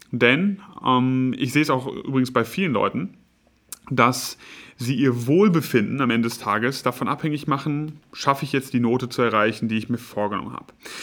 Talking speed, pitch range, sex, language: 180 wpm, 120-145 Hz, male, German